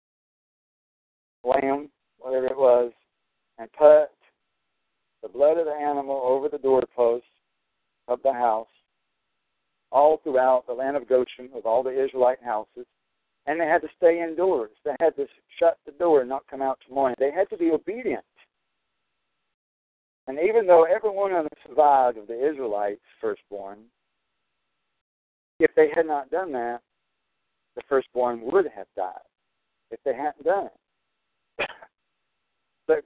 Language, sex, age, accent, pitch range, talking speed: English, male, 50-69, American, 120-150 Hz, 145 wpm